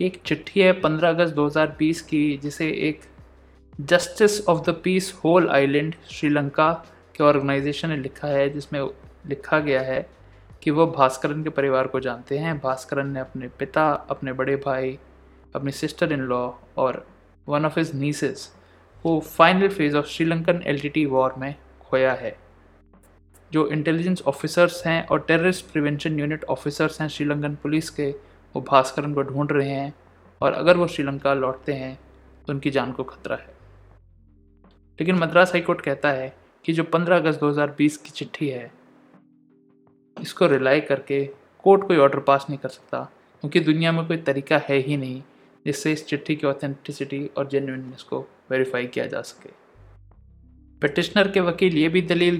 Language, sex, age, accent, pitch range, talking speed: Hindi, male, 20-39, native, 130-155 Hz, 160 wpm